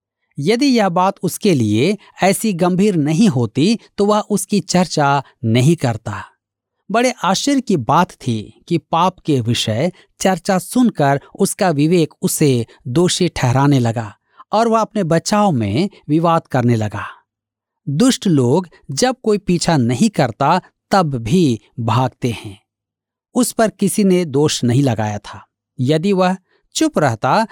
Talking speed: 135 wpm